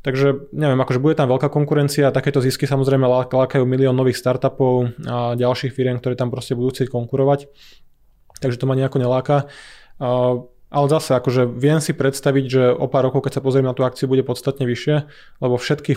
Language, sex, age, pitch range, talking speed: Slovak, male, 20-39, 125-135 Hz, 190 wpm